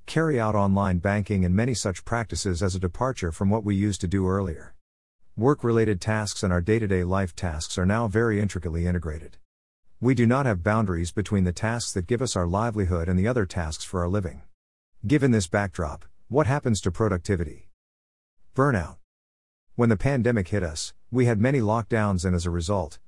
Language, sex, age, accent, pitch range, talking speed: English, male, 50-69, American, 90-115 Hz, 185 wpm